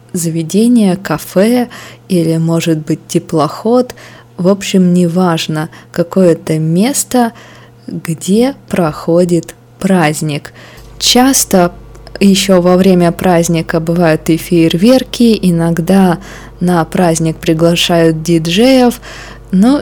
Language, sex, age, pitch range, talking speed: Russian, female, 20-39, 160-195 Hz, 85 wpm